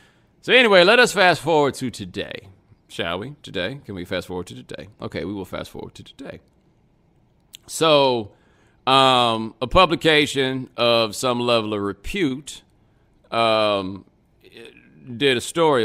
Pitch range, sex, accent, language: 110-150 Hz, male, American, English